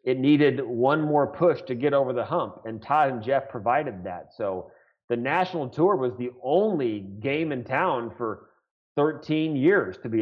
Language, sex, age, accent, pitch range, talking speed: English, male, 30-49, American, 125-160 Hz, 180 wpm